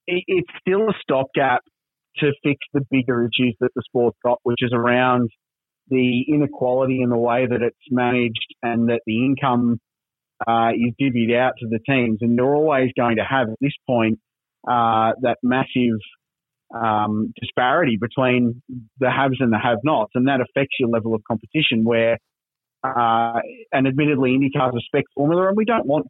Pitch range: 120-140 Hz